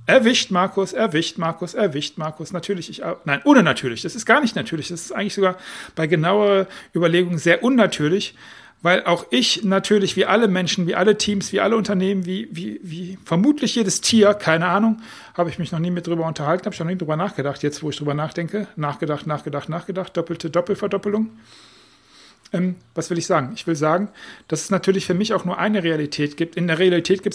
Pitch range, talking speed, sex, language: 160-200 Hz, 195 wpm, male, German